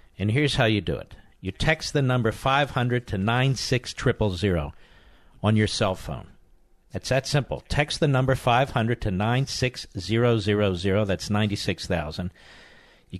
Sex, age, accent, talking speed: male, 50-69, American, 155 wpm